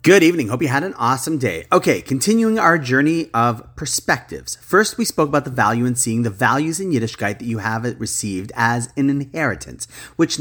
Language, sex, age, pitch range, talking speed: English, male, 40-59, 115-170 Hz, 195 wpm